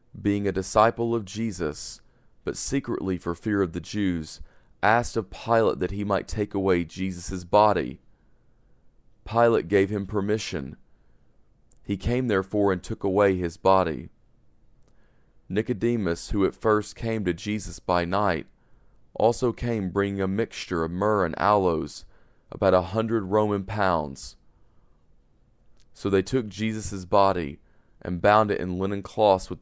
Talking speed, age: 140 wpm, 40-59